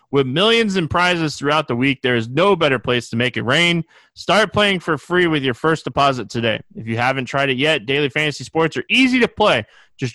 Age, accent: 20-39, American